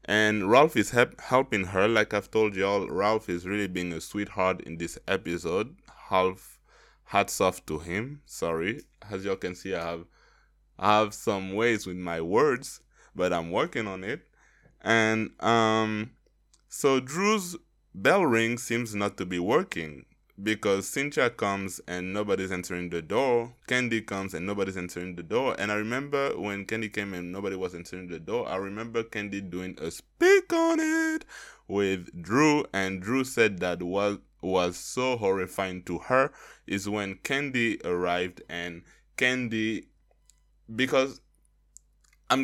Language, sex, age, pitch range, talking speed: English, male, 20-39, 90-115 Hz, 155 wpm